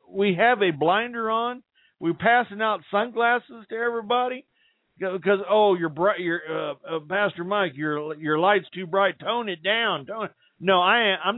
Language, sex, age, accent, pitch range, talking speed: English, male, 50-69, American, 150-200 Hz, 180 wpm